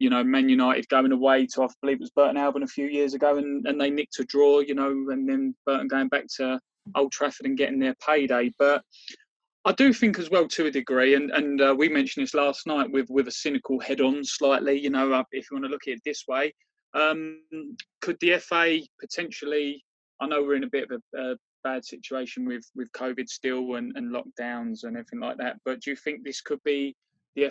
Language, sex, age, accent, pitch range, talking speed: English, male, 20-39, British, 135-160 Hz, 230 wpm